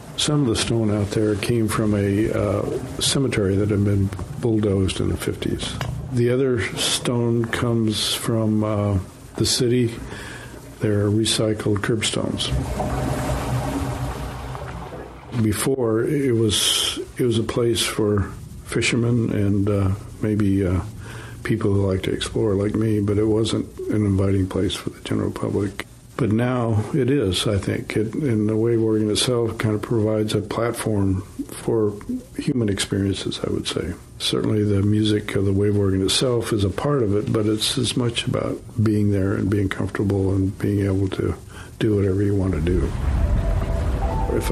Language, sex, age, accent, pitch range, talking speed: English, male, 60-79, American, 100-115 Hz, 160 wpm